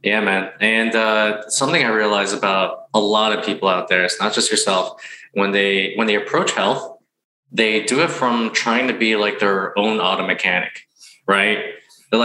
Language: English